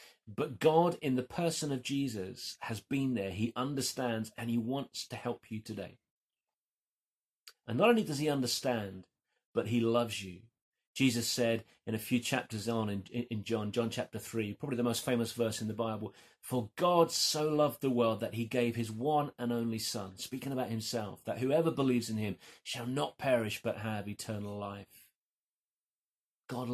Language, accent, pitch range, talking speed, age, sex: English, British, 110-130 Hz, 180 wpm, 30-49, male